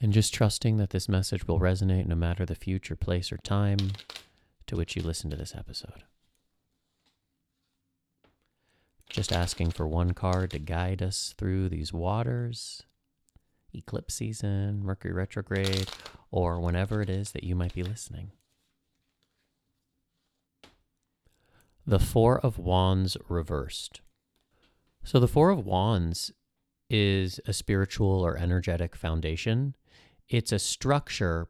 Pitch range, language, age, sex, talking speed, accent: 85-100 Hz, English, 30-49, male, 125 wpm, American